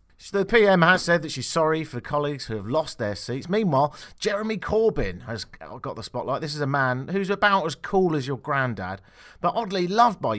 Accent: British